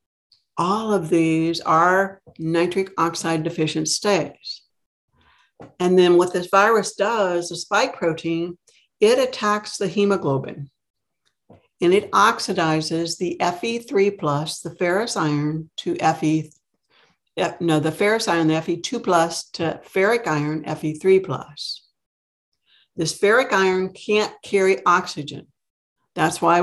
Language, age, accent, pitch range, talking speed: English, 60-79, American, 160-195 Hz, 115 wpm